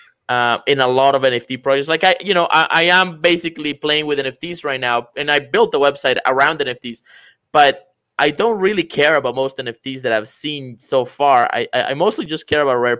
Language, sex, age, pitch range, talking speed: English, male, 20-39, 125-155 Hz, 215 wpm